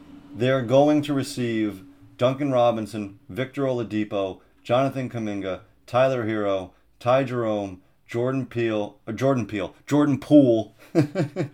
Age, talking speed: 40-59, 105 wpm